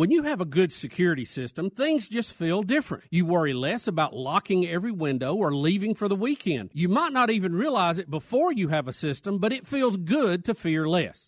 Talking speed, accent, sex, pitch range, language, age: 220 wpm, American, male, 160-230 Hz, English, 50-69